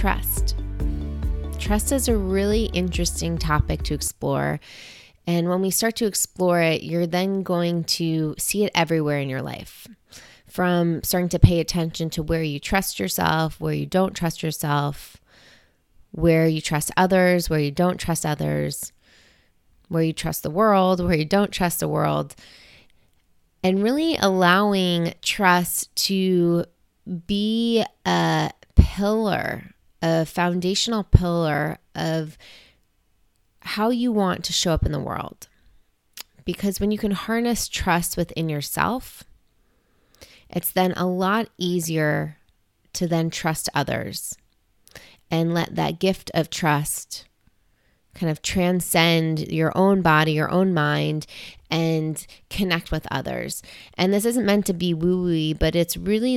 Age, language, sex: 20-39, English, female